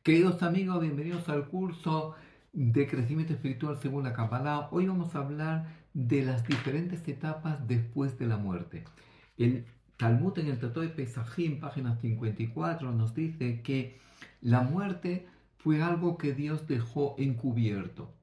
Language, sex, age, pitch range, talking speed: Greek, male, 50-69, 125-160 Hz, 145 wpm